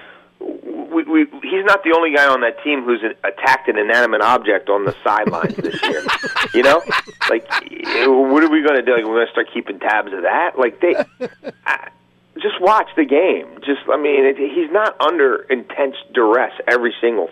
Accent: American